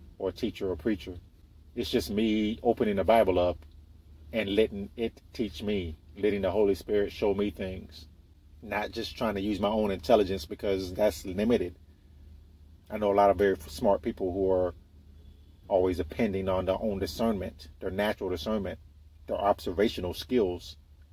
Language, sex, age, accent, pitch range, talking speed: English, male, 40-59, American, 75-100 Hz, 160 wpm